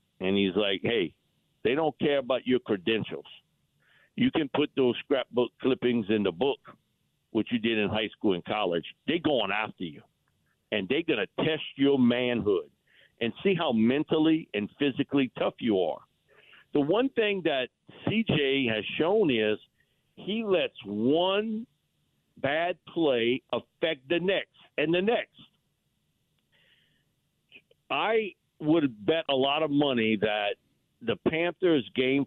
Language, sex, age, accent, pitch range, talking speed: English, male, 60-79, American, 115-165 Hz, 145 wpm